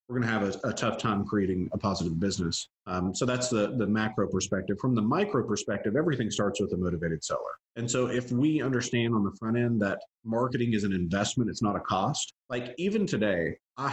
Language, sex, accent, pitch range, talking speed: English, male, American, 105-130 Hz, 220 wpm